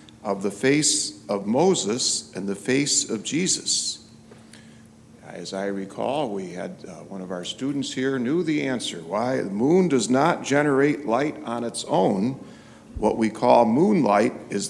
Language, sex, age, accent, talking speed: English, male, 50-69, American, 160 wpm